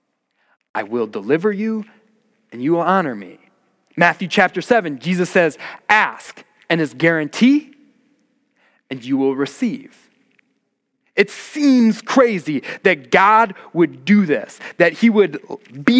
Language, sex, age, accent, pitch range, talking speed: English, male, 30-49, American, 175-240 Hz, 130 wpm